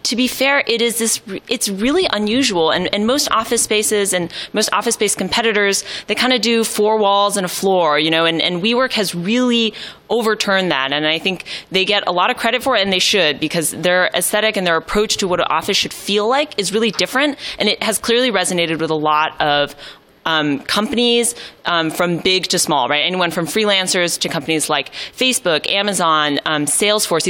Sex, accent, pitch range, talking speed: female, American, 165-210 Hz, 210 wpm